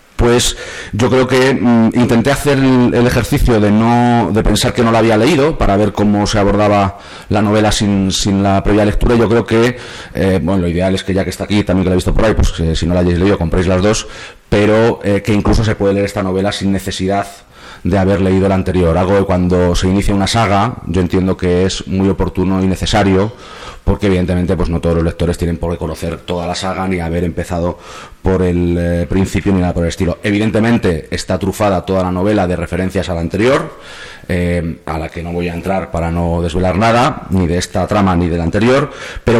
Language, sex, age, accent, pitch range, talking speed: Spanish, male, 30-49, Spanish, 90-105 Hz, 225 wpm